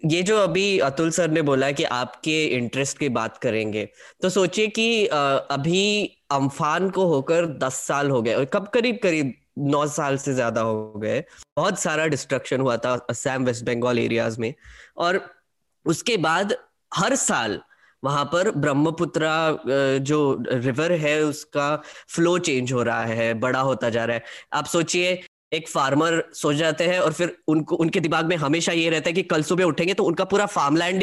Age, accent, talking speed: 10-29, native, 175 wpm